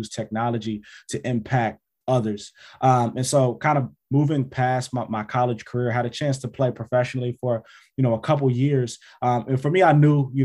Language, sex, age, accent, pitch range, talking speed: English, male, 20-39, American, 115-130 Hz, 195 wpm